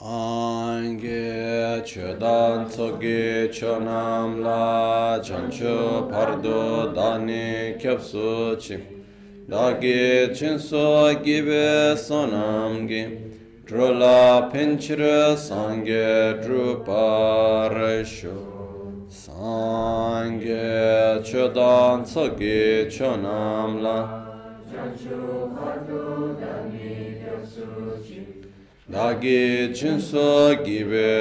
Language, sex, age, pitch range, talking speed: Italian, male, 30-49, 110-125 Hz, 65 wpm